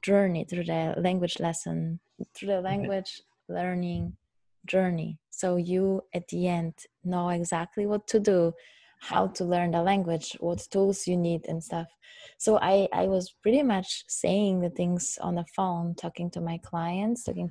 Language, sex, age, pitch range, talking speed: English, female, 20-39, 170-195 Hz, 165 wpm